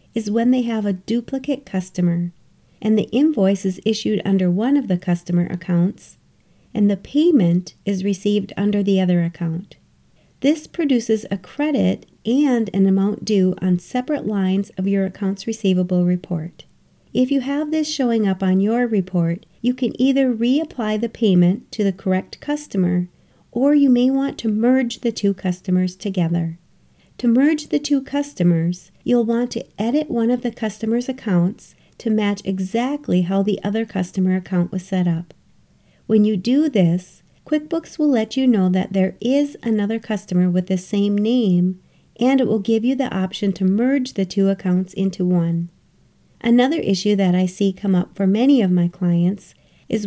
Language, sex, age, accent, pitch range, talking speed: English, female, 40-59, American, 185-240 Hz, 170 wpm